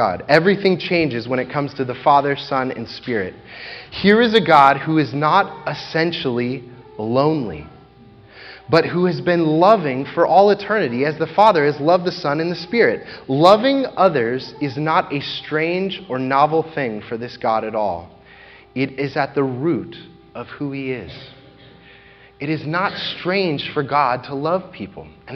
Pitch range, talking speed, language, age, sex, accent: 135-190 Hz, 170 wpm, English, 30-49, male, American